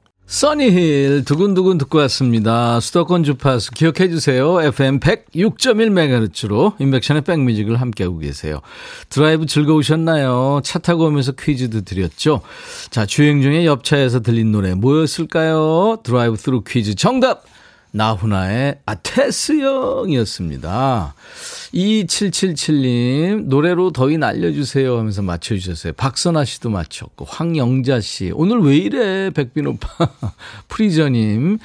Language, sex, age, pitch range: Korean, male, 40-59, 115-170 Hz